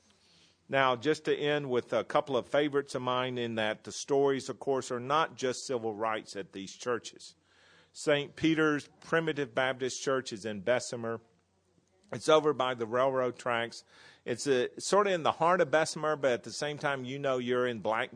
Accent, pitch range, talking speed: American, 100-135 Hz, 190 wpm